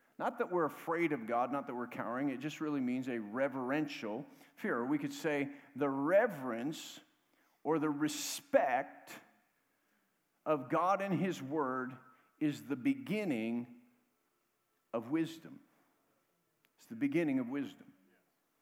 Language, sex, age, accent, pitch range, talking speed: English, male, 50-69, American, 130-210 Hz, 130 wpm